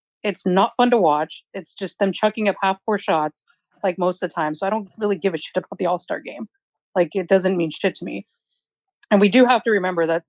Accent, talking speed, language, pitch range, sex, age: American, 245 wpm, English, 165-200 Hz, female, 30-49